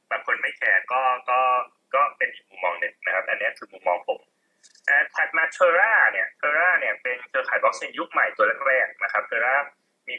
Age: 20-39